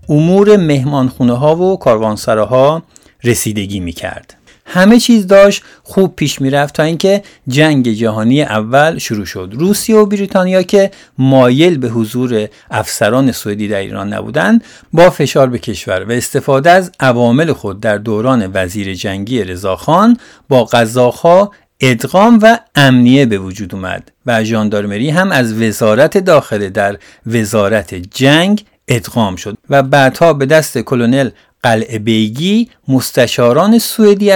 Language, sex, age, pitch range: Persian, male, 50-69, 110-170 Hz